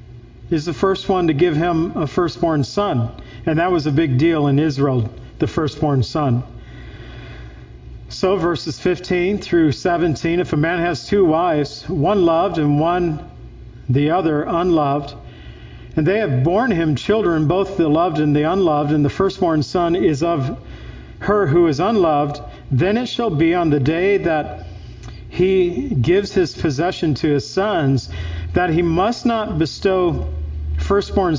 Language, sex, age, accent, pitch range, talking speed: English, male, 50-69, American, 140-175 Hz, 155 wpm